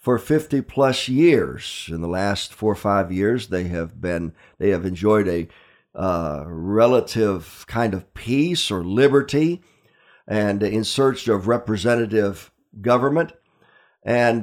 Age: 50-69